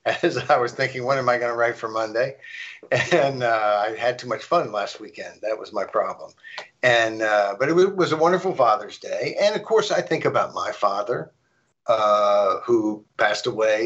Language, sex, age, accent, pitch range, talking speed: English, male, 50-69, American, 110-145 Hz, 200 wpm